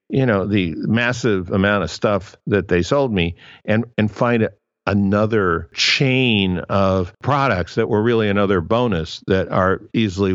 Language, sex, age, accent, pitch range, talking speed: English, male, 50-69, American, 90-115 Hz, 150 wpm